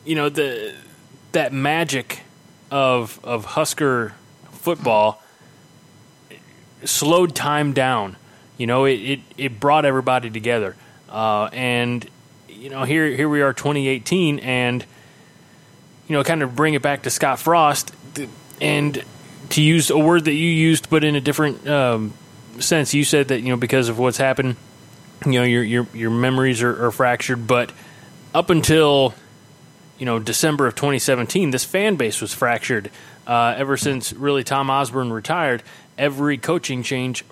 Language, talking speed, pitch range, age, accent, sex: English, 155 wpm, 120-150 Hz, 20-39, American, male